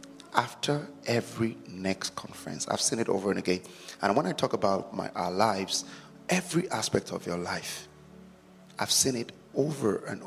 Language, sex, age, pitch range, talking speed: English, male, 30-49, 95-125 Hz, 165 wpm